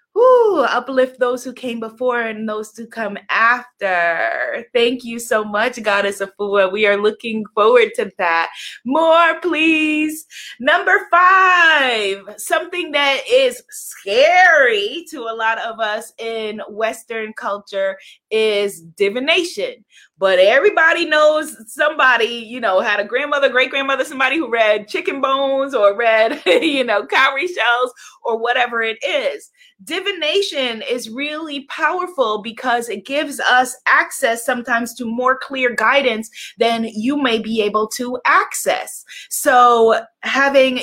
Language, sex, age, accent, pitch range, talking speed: English, female, 20-39, American, 225-290 Hz, 135 wpm